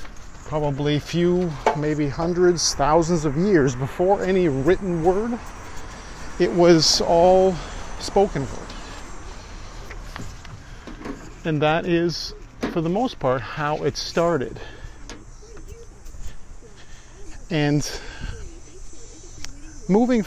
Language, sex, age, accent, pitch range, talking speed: English, male, 40-59, American, 110-170 Hz, 85 wpm